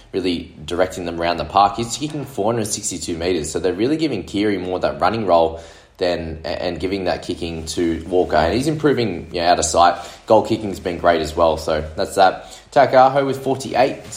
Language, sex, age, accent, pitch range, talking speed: English, male, 20-39, Australian, 85-115 Hz, 185 wpm